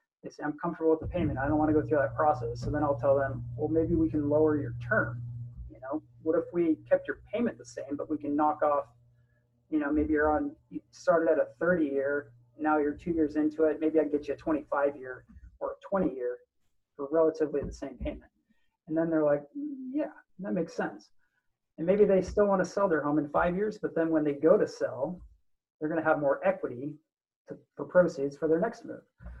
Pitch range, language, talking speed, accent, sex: 145-180 Hz, English, 230 wpm, American, male